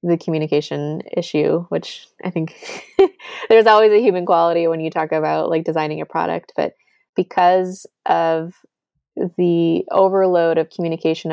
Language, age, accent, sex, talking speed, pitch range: English, 20-39, American, female, 140 wpm, 160-180 Hz